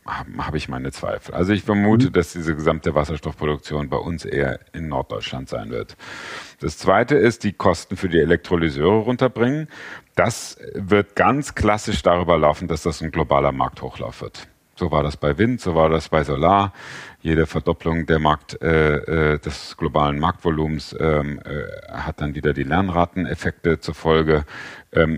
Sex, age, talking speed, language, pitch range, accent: male, 40-59, 160 wpm, German, 75-105 Hz, German